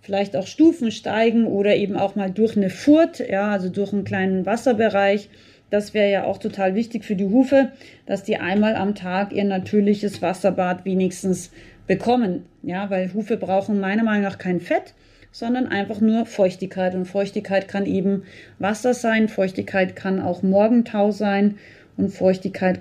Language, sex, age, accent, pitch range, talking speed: German, female, 30-49, German, 190-230 Hz, 165 wpm